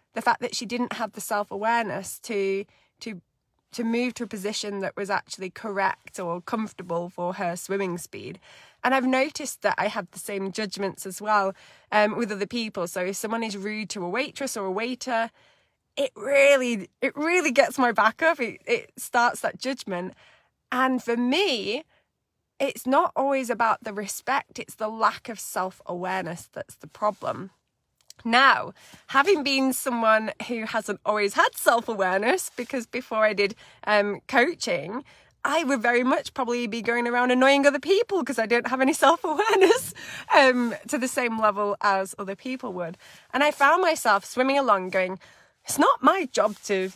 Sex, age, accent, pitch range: female, 20-39, British, 200-265 Hz